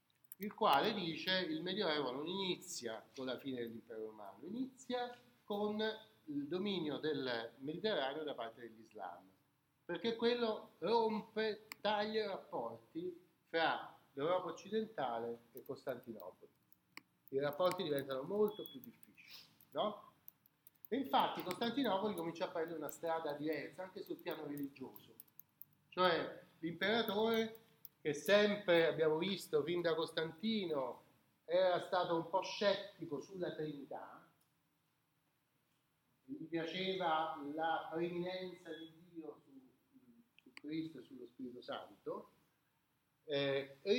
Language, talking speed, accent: Italian, 115 wpm, native